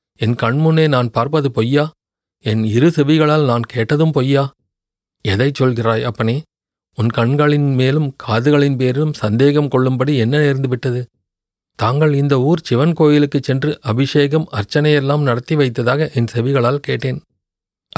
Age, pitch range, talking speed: 40-59, 120-150 Hz, 120 wpm